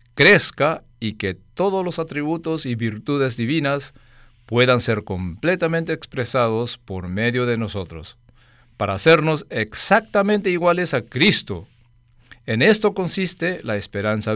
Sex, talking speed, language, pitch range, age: male, 115 wpm, Spanish, 110-150 Hz, 50-69